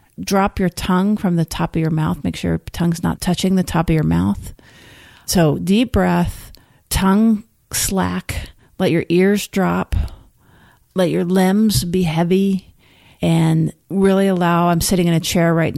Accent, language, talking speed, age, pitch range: American, English, 165 wpm, 40-59, 155-190 Hz